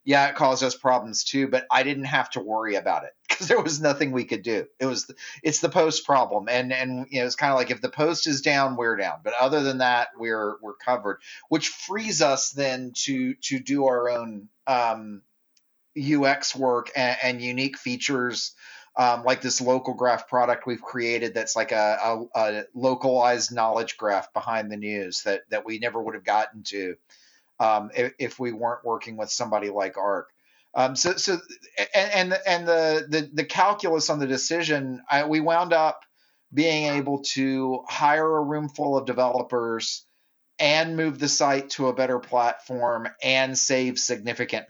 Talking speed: 190 wpm